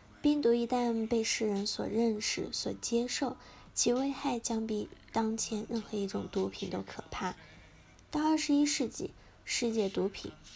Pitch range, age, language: 200-255 Hz, 10-29, Chinese